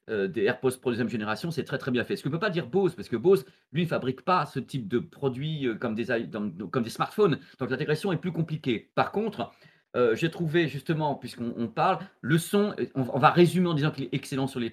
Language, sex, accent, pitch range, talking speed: French, male, French, 130-175 Hz, 240 wpm